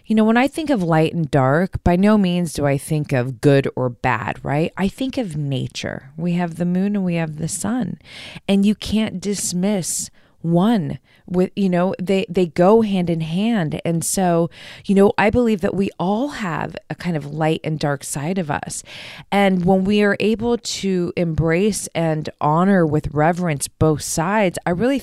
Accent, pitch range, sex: American, 160-210 Hz, female